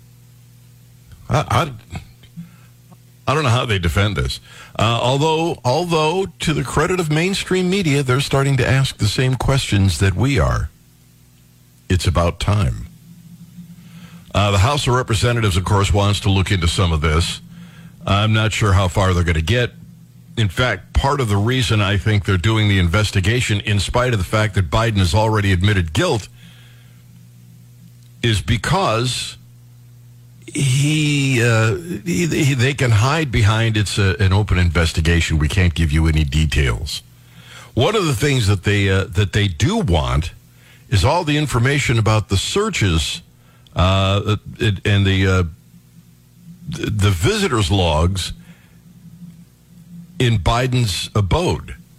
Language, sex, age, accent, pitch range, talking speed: English, male, 60-79, American, 95-130 Hz, 145 wpm